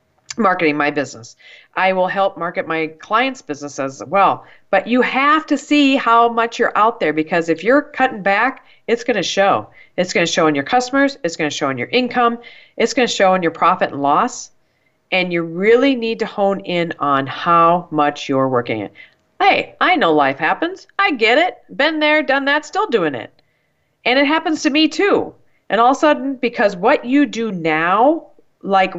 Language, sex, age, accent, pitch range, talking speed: English, female, 40-59, American, 170-255 Hz, 205 wpm